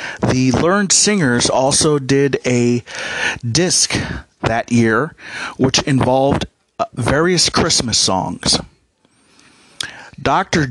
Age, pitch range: 40-59, 115-140 Hz